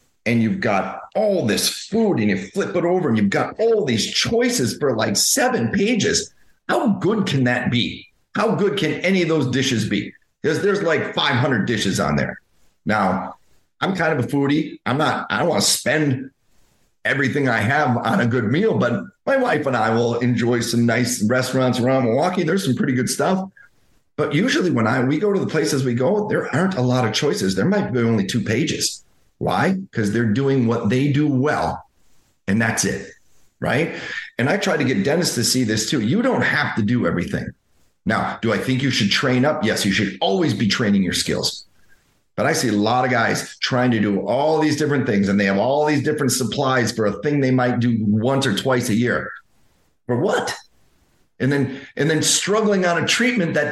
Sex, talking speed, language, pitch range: male, 210 wpm, English, 115-165 Hz